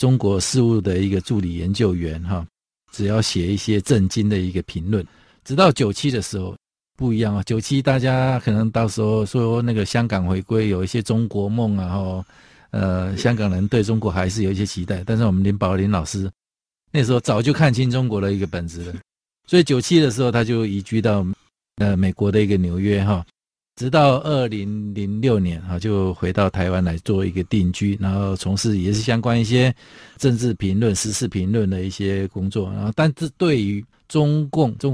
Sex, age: male, 50-69